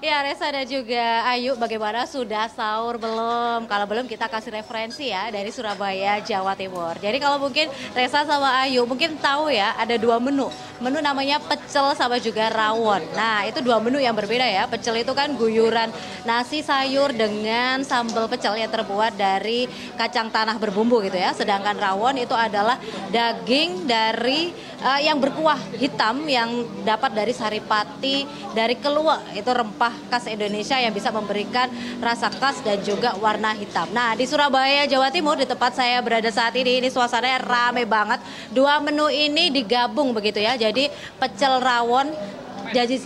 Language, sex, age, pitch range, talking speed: Indonesian, female, 20-39, 225-280 Hz, 160 wpm